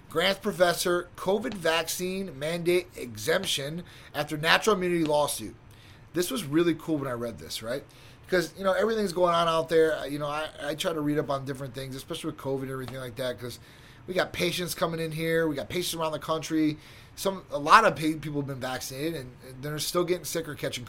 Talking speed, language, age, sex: 215 wpm, English, 30-49, male